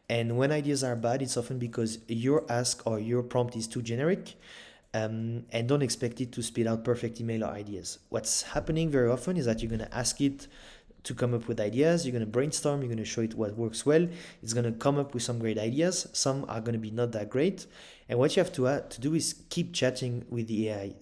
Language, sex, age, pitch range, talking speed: English, male, 30-49, 115-135 Hz, 250 wpm